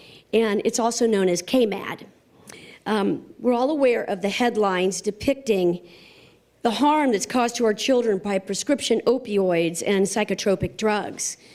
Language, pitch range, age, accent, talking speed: English, 200-245 Hz, 50-69, American, 135 wpm